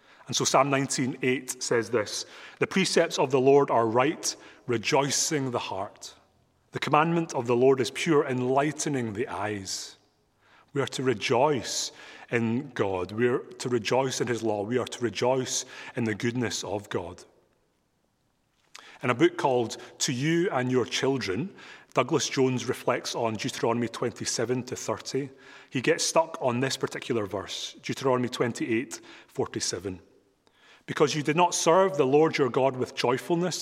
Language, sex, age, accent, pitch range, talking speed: English, male, 30-49, British, 115-135 Hz, 160 wpm